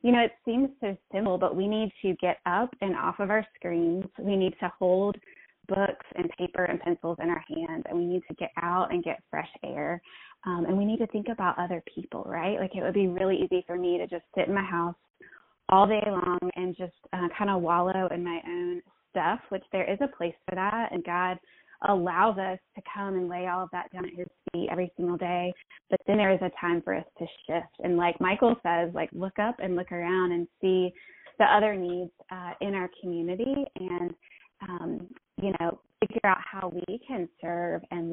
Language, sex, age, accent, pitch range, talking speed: English, female, 20-39, American, 175-200 Hz, 220 wpm